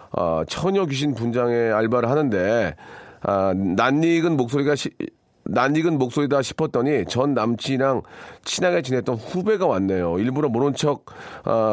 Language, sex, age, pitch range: Korean, male, 40-59, 110-140 Hz